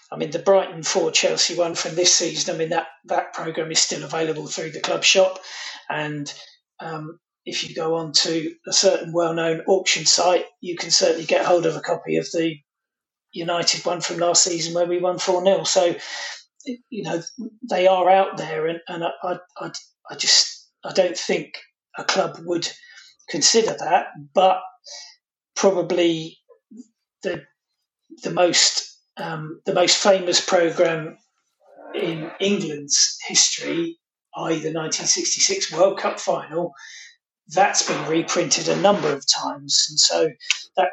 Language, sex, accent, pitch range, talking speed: English, male, British, 165-190 Hz, 150 wpm